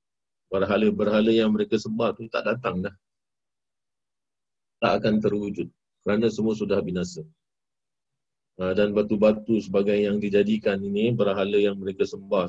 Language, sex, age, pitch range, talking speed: Malay, male, 40-59, 95-110 Hz, 120 wpm